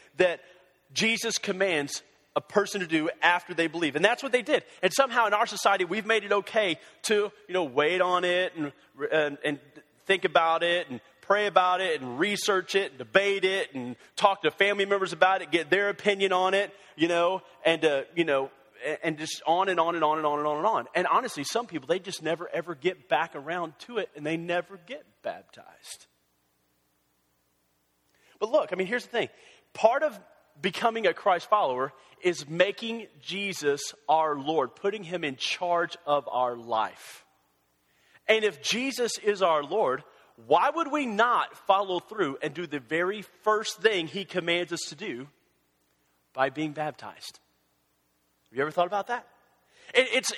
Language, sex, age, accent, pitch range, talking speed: English, male, 30-49, American, 150-205 Hz, 185 wpm